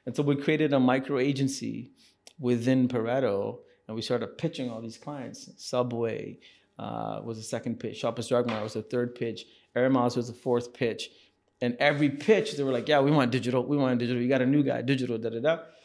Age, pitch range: 30-49, 120-140 Hz